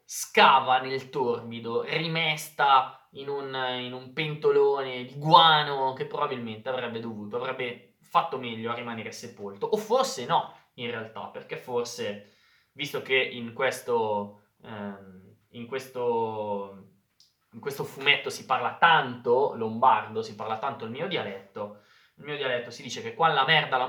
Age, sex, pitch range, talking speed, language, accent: 20-39, male, 110-145 Hz, 145 wpm, Italian, native